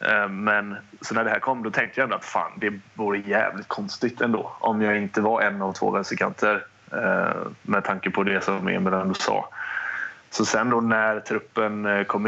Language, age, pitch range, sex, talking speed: English, 20-39, 100-110 Hz, male, 185 wpm